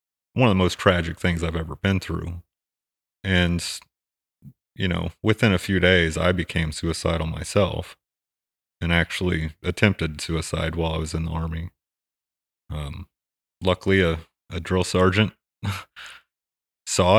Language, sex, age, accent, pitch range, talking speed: English, male, 30-49, American, 80-95 Hz, 135 wpm